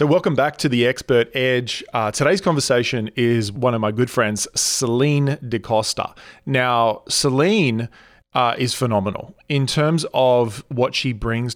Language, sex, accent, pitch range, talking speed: English, male, Australian, 115-140 Hz, 155 wpm